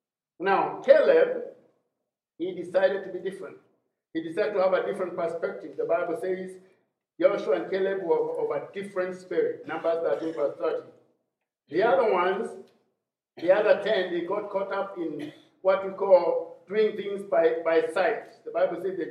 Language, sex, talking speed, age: English, male, 165 wpm, 50-69